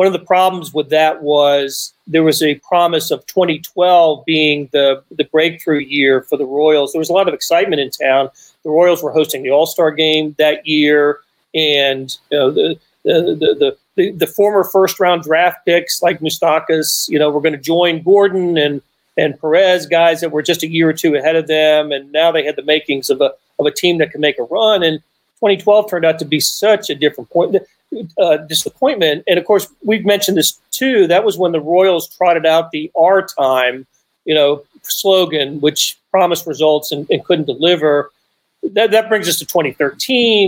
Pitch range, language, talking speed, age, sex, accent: 150-185 Hz, English, 200 wpm, 40-59, male, American